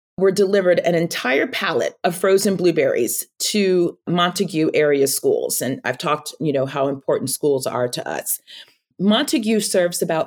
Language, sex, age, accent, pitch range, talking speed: English, female, 30-49, American, 160-210 Hz, 150 wpm